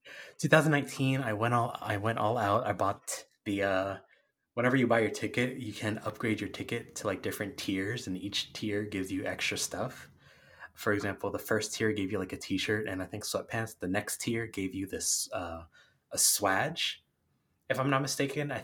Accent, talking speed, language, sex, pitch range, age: American, 195 wpm, English, male, 95-120 Hz, 20-39